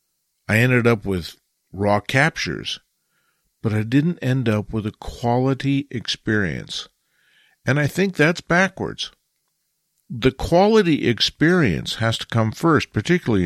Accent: American